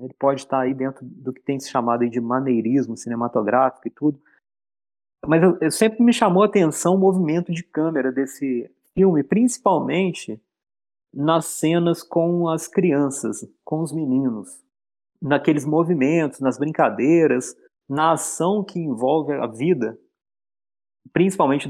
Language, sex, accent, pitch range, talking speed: Portuguese, male, Brazilian, 140-185 Hz, 140 wpm